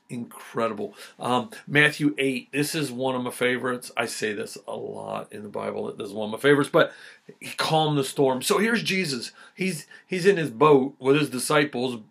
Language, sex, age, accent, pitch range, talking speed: English, male, 50-69, American, 125-155 Hz, 205 wpm